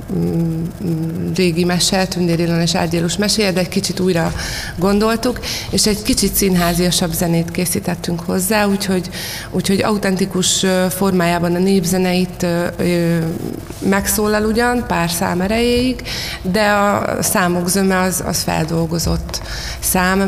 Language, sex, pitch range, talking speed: Hungarian, female, 170-190 Hz, 110 wpm